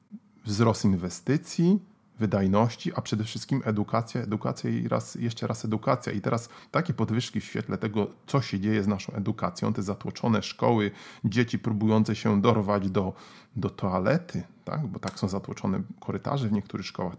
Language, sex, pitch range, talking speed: Polish, male, 100-135 Hz, 155 wpm